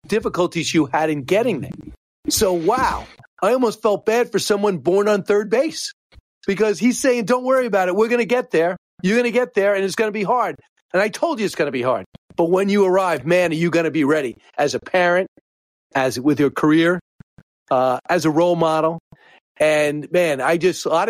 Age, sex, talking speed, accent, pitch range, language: 40-59, male, 225 wpm, American, 150-195 Hz, English